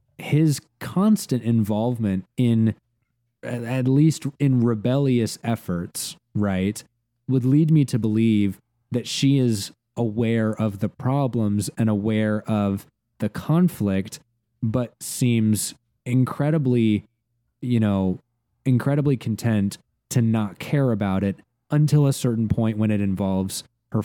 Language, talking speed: English, 115 wpm